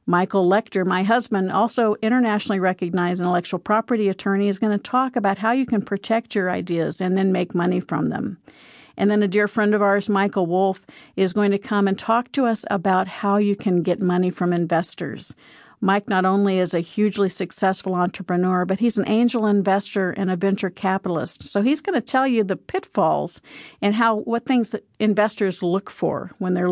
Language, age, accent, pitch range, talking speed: English, 50-69, American, 180-225 Hz, 195 wpm